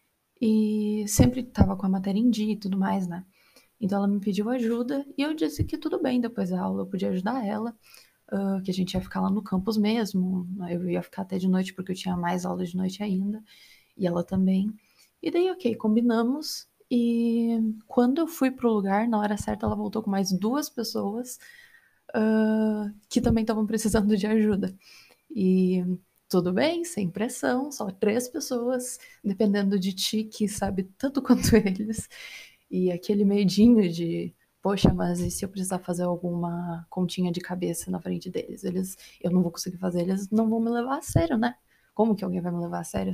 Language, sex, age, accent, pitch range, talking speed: Portuguese, female, 20-39, Brazilian, 185-235 Hz, 195 wpm